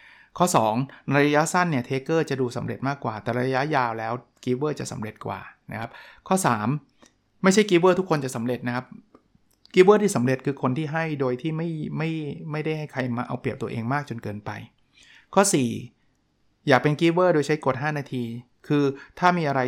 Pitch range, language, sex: 125-155 Hz, Thai, male